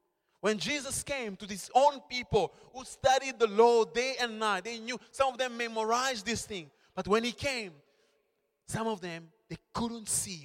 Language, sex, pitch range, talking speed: English, male, 140-220 Hz, 185 wpm